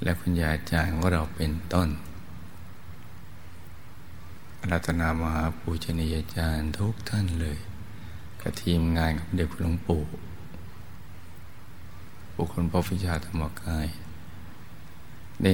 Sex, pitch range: male, 80-90 Hz